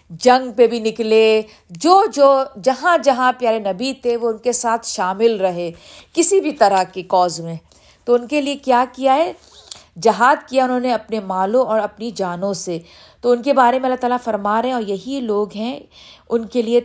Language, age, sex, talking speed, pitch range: Urdu, 50-69, female, 205 wpm, 200-260 Hz